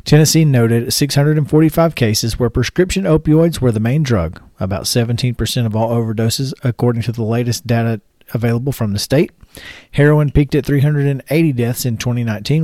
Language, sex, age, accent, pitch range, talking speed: English, male, 40-59, American, 120-155 Hz, 150 wpm